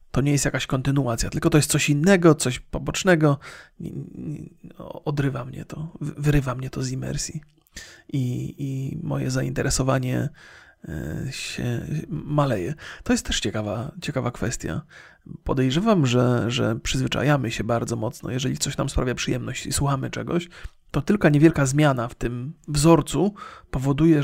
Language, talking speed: Polish, 135 wpm